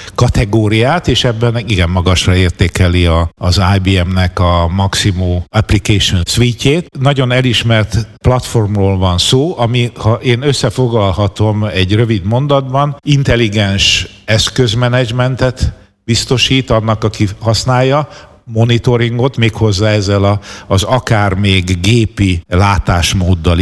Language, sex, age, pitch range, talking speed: Hungarian, male, 60-79, 95-120 Hz, 100 wpm